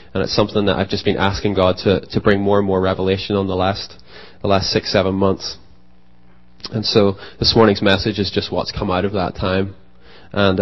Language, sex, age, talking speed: English, male, 20-39, 215 wpm